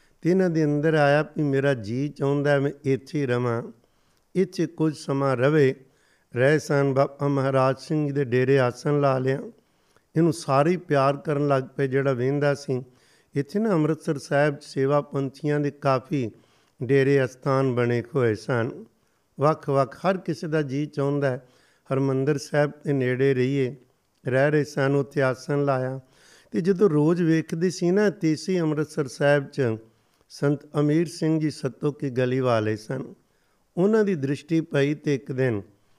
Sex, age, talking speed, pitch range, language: male, 60-79, 150 wpm, 130-155 Hz, Punjabi